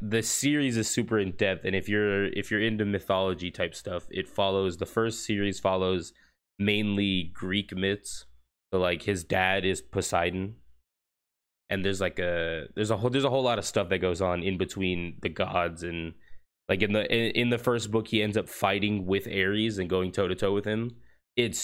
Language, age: English, 20-39